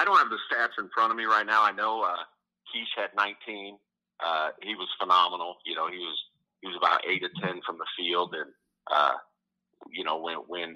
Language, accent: English, American